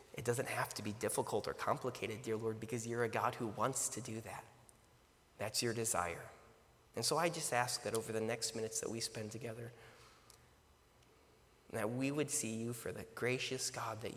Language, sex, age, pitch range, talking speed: English, male, 30-49, 110-130 Hz, 195 wpm